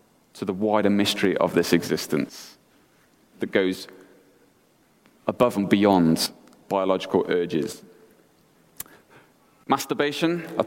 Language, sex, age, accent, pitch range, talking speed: English, male, 30-49, British, 95-115 Hz, 90 wpm